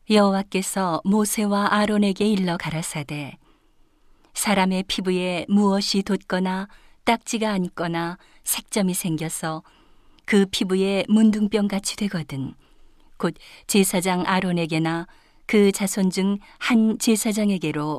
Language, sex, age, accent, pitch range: Korean, female, 40-59, native, 180-215 Hz